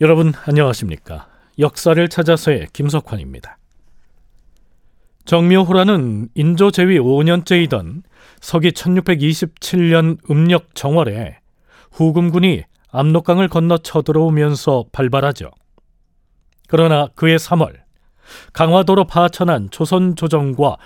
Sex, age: male, 40-59